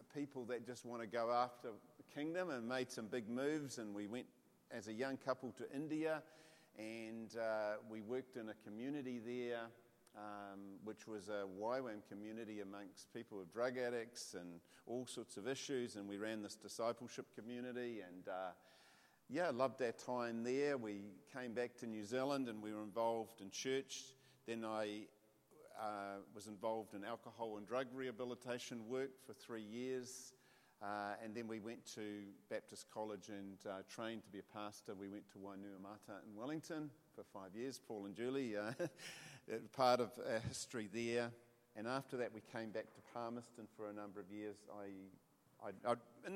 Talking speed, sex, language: 175 wpm, male, English